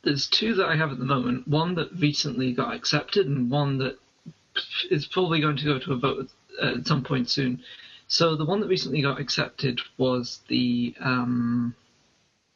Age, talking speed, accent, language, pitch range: 30-49, 190 wpm, British, English, 125-150 Hz